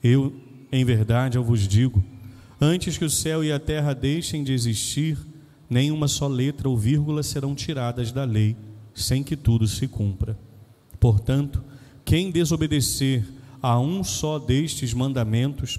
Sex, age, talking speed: male, 30-49, 145 wpm